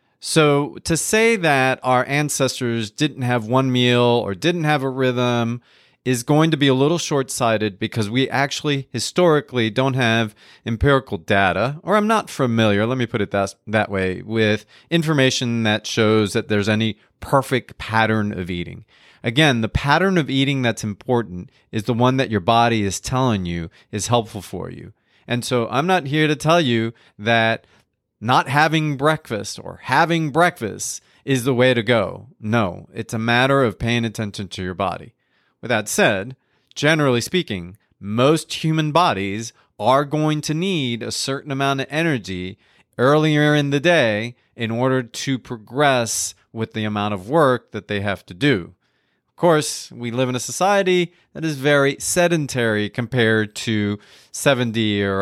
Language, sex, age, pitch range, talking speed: English, male, 30-49, 110-145 Hz, 165 wpm